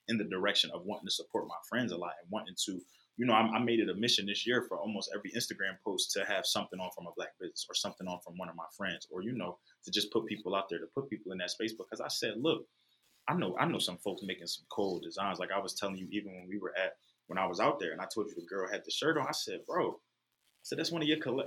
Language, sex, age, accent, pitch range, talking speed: English, male, 20-39, American, 105-140 Hz, 305 wpm